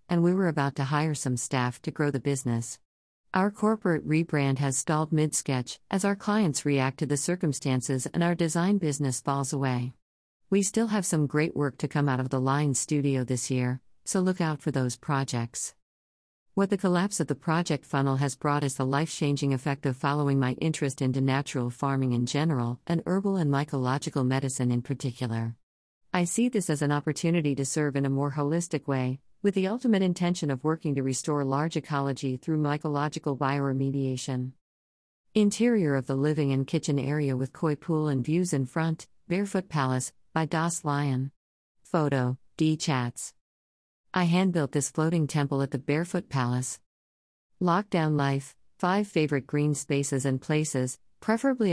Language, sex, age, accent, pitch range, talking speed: English, female, 50-69, American, 130-160 Hz, 170 wpm